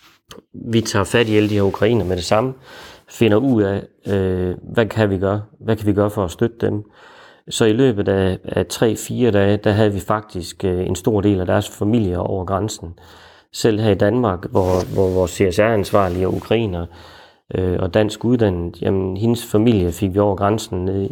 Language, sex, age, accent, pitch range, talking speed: Danish, male, 30-49, native, 95-110 Hz, 195 wpm